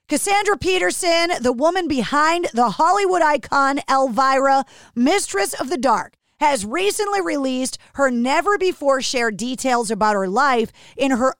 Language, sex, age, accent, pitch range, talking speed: English, female, 40-59, American, 230-310 Hz, 125 wpm